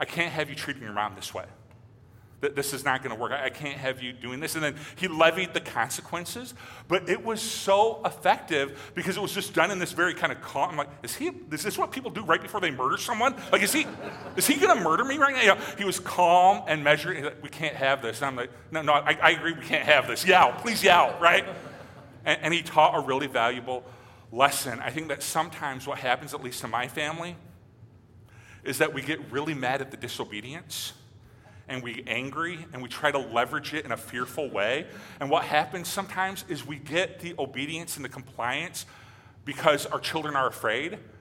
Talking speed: 225 wpm